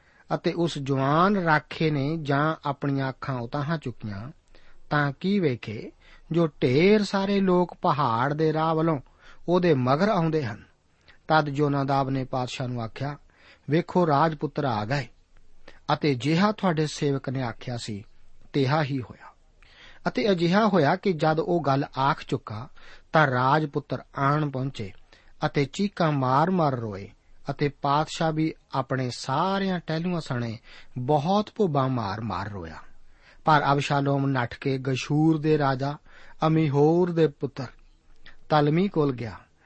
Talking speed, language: 130 wpm, Punjabi